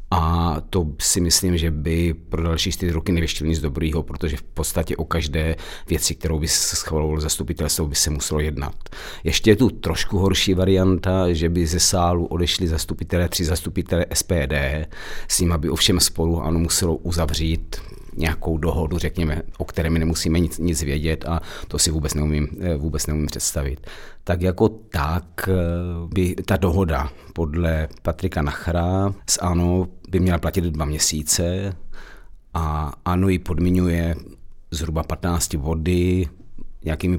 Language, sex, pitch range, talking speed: Czech, male, 80-85 Hz, 150 wpm